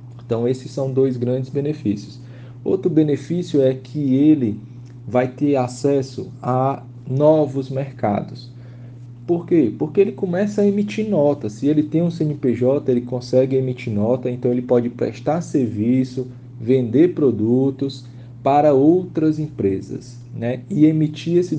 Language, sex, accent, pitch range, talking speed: Portuguese, male, Brazilian, 120-150 Hz, 135 wpm